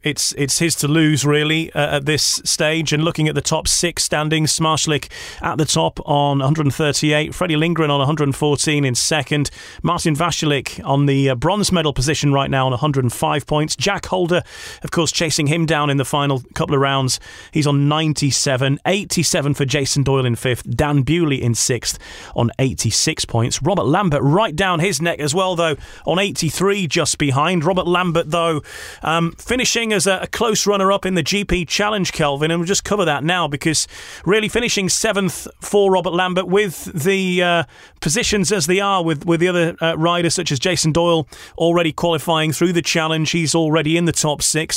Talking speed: 190 wpm